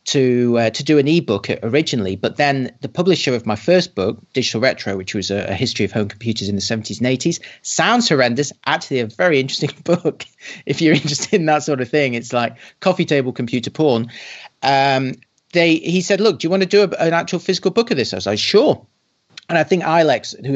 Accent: British